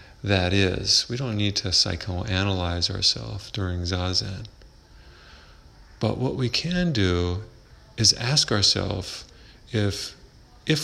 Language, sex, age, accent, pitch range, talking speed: English, male, 40-59, American, 85-115 Hz, 110 wpm